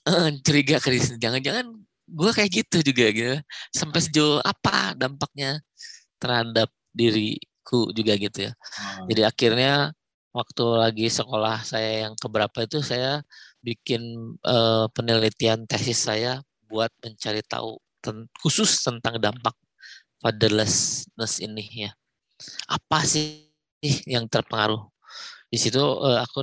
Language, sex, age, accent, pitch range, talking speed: Indonesian, male, 20-39, native, 110-135 Hz, 120 wpm